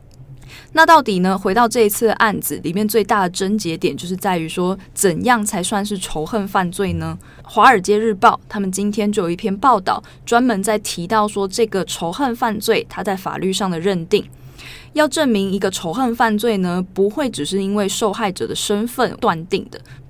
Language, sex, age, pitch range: Chinese, female, 20-39, 175-220 Hz